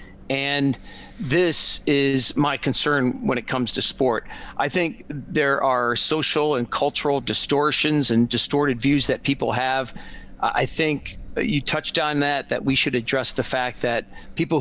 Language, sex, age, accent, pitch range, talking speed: English, male, 40-59, American, 125-150 Hz, 155 wpm